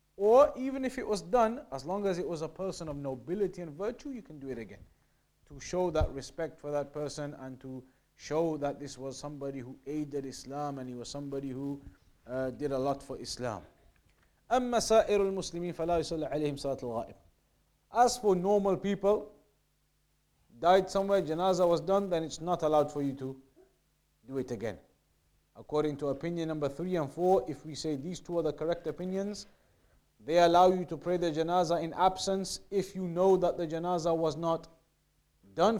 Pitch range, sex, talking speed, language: 140-195 Hz, male, 175 wpm, English